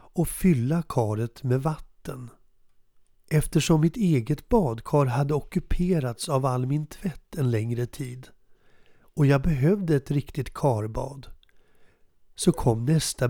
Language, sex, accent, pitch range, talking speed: Swedish, male, native, 120-150 Hz, 120 wpm